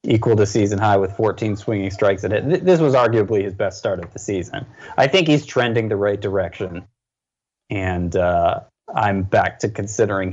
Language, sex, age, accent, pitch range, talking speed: English, male, 20-39, American, 95-120 Hz, 185 wpm